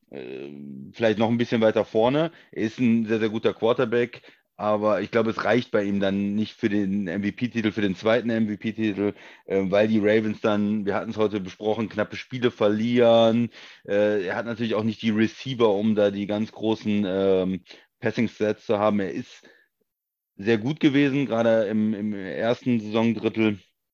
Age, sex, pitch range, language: 30-49, male, 105-120 Hz, German